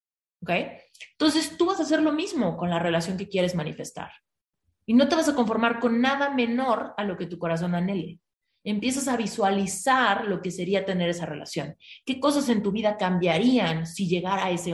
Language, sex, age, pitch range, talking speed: Spanish, female, 30-49, 175-245 Hz, 190 wpm